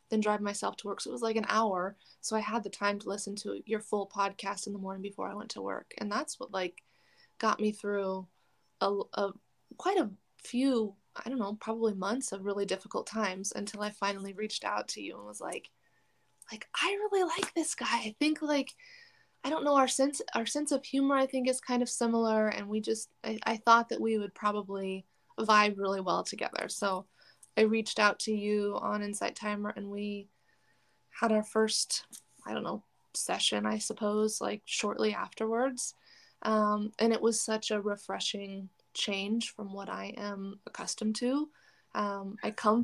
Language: English